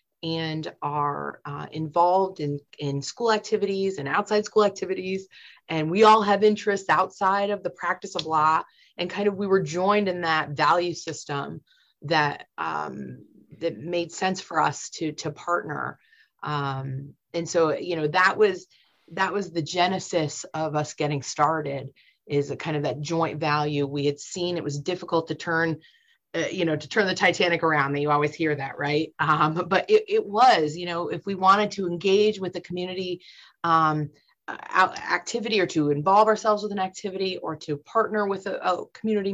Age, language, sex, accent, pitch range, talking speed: 30-49, English, female, American, 155-200 Hz, 175 wpm